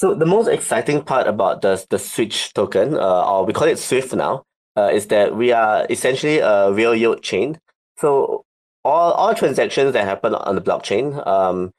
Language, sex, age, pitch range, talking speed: English, male, 20-39, 100-130 Hz, 190 wpm